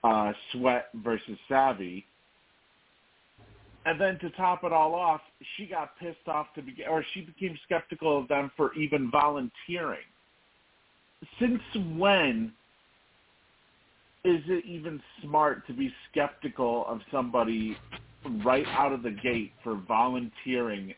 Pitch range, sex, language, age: 115-165 Hz, male, English, 40-59